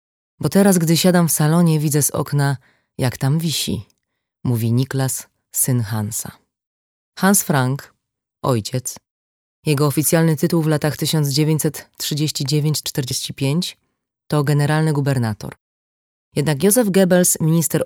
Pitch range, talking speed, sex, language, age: 130-160 Hz, 110 wpm, female, Polish, 20-39